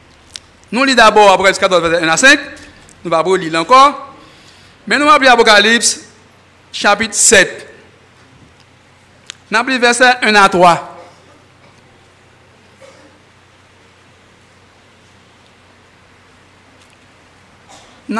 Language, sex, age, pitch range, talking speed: French, male, 60-79, 190-275 Hz, 90 wpm